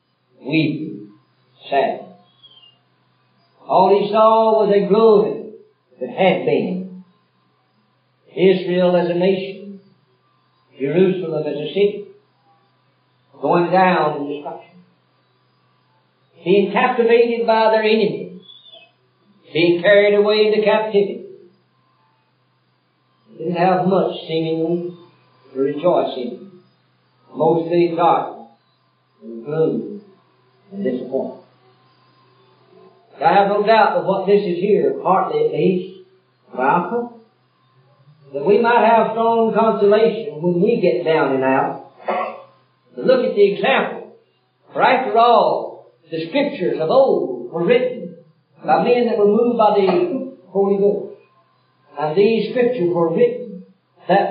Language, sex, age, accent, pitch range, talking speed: English, male, 50-69, American, 160-220 Hz, 110 wpm